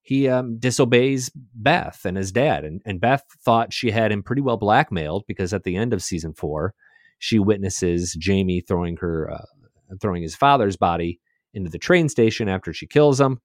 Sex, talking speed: male, 185 wpm